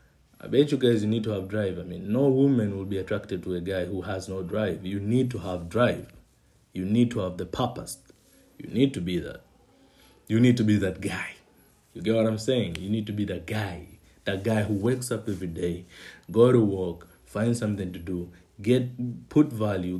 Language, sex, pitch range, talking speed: Swahili, male, 90-115 Hz, 220 wpm